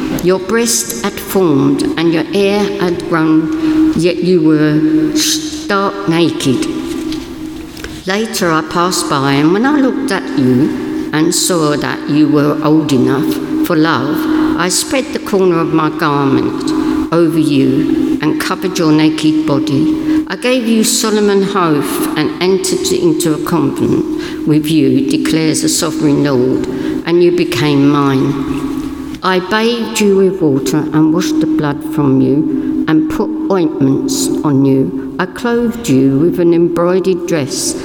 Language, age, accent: English, 60-79, British